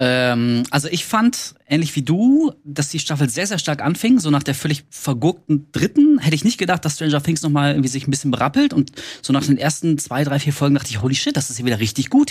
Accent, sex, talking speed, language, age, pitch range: German, male, 250 wpm, German, 20-39, 130-160 Hz